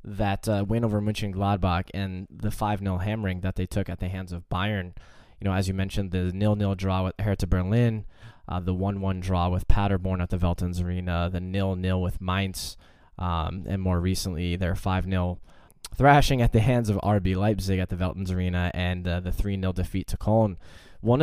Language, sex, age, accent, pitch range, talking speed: English, male, 10-29, American, 95-115 Hz, 190 wpm